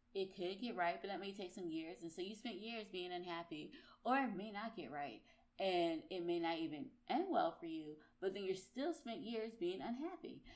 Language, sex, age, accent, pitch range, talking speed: English, female, 20-39, American, 175-260 Hz, 235 wpm